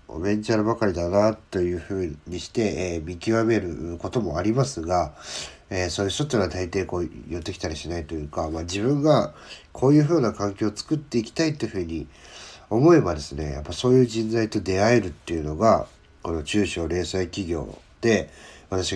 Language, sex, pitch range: Japanese, male, 85-110 Hz